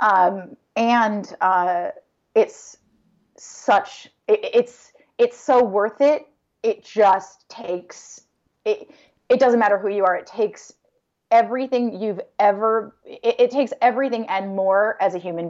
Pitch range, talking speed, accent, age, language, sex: 190-250 Hz, 135 wpm, American, 30-49, English, female